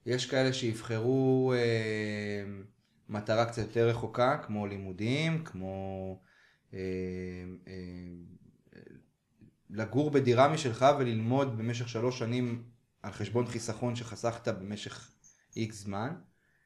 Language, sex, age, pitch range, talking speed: Hebrew, male, 20-39, 100-125 Hz, 95 wpm